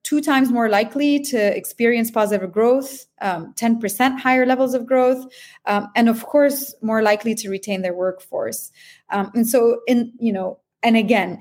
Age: 30-49